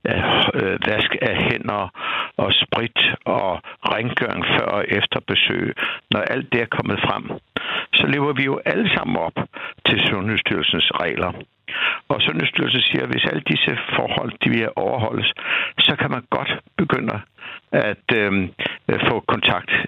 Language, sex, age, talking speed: Danish, male, 60-79, 140 wpm